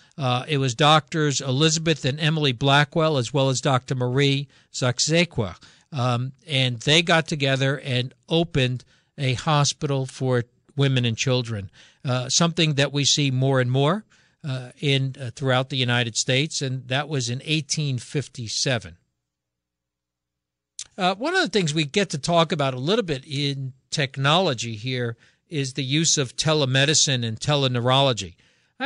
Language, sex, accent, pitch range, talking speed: English, male, American, 125-155 Hz, 150 wpm